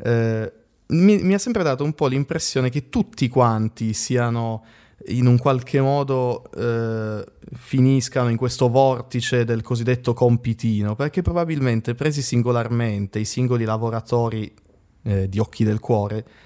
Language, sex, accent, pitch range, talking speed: Italian, male, native, 110-130 Hz, 130 wpm